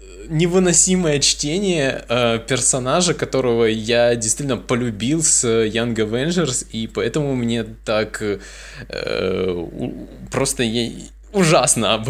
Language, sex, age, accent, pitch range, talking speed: Russian, male, 20-39, native, 100-130 Hz, 105 wpm